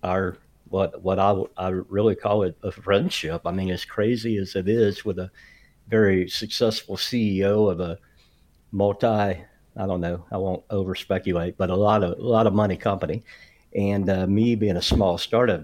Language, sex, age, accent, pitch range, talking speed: English, male, 50-69, American, 95-110 Hz, 185 wpm